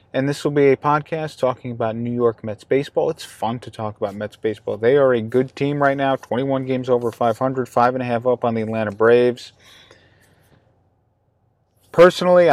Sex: male